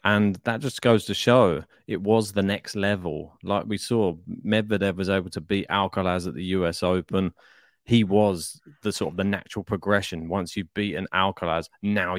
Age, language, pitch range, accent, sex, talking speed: 30-49, English, 95-110 Hz, British, male, 180 wpm